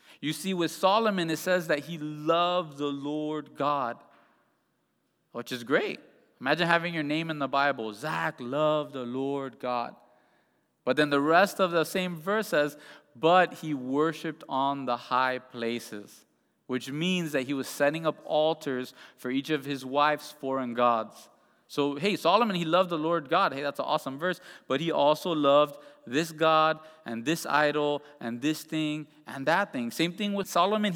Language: English